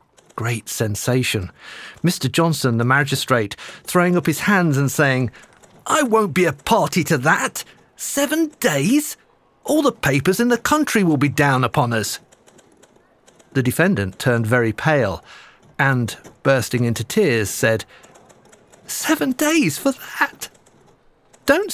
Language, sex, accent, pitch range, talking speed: English, male, British, 125-200 Hz, 130 wpm